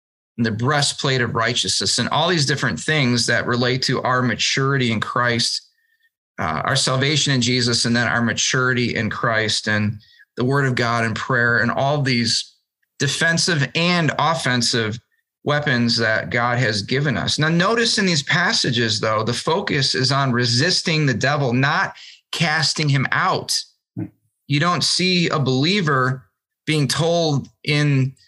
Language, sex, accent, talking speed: English, male, American, 150 wpm